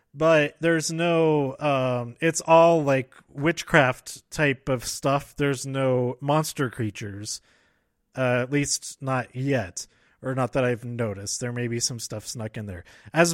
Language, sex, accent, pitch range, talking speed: English, male, American, 120-155 Hz, 155 wpm